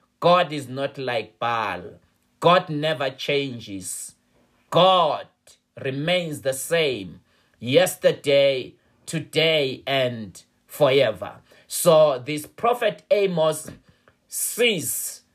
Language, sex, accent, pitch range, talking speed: English, male, South African, 135-185 Hz, 80 wpm